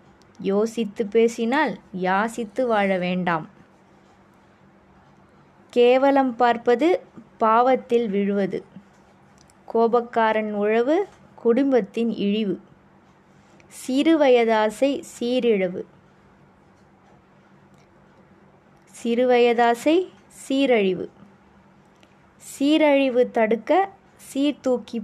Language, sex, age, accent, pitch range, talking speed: Tamil, female, 20-39, native, 200-255 Hz, 50 wpm